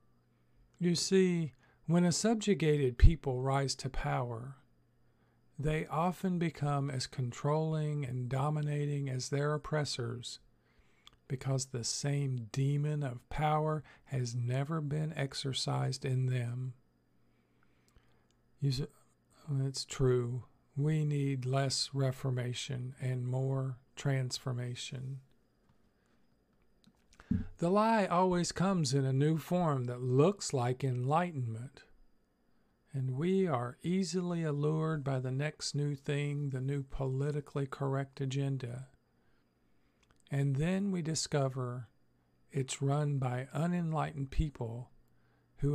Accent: American